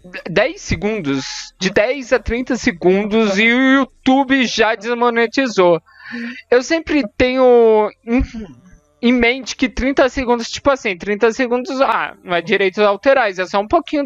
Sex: male